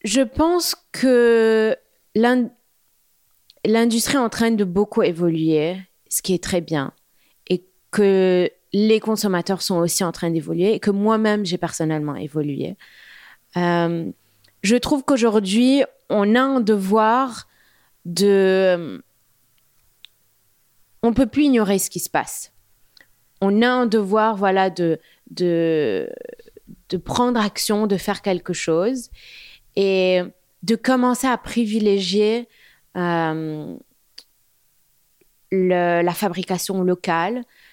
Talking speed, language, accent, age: 115 wpm, French, French, 20-39